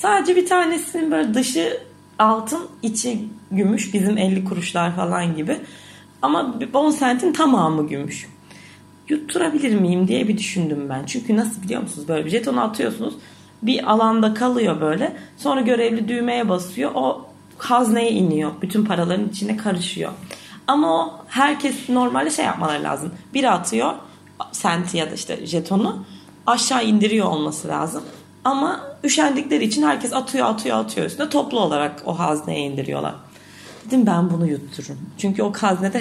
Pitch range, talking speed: 185-260 Hz, 140 wpm